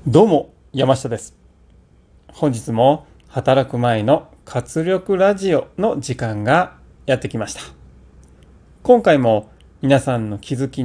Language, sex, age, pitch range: Japanese, male, 30-49, 100-155 Hz